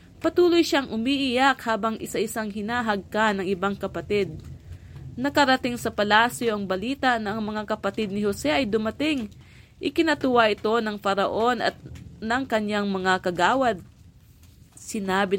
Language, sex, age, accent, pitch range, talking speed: English, female, 30-49, Filipino, 195-240 Hz, 130 wpm